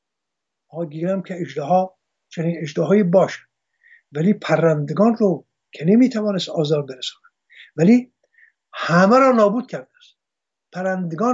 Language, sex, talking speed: English, male, 120 wpm